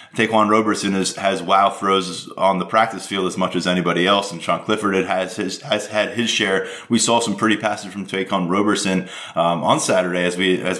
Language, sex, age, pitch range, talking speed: English, male, 20-39, 95-115 Hz, 210 wpm